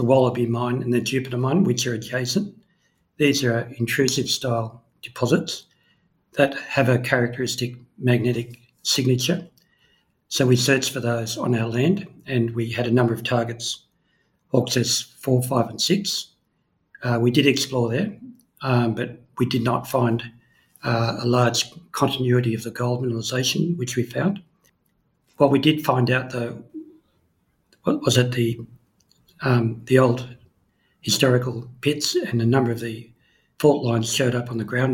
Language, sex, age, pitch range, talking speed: English, male, 60-79, 120-135 Hz, 155 wpm